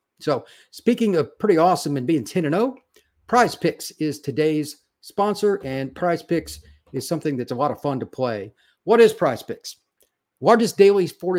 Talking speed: 180 wpm